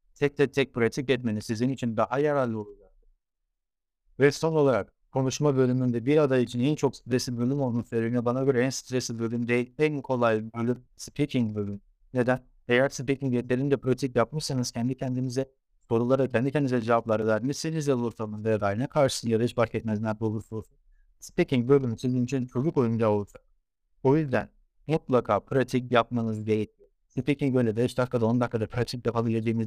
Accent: Turkish